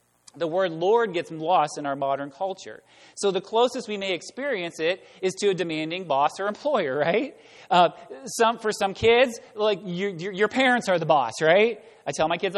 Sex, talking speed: male, 200 wpm